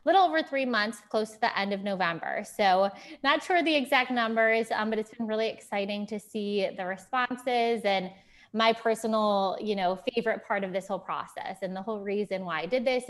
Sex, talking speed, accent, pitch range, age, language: female, 205 wpm, American, 185-230 Hz, 20-39, English